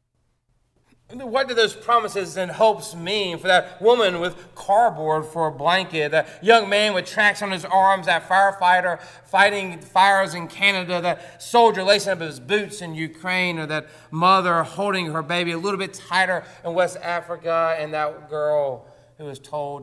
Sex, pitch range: male, 120-190 Hz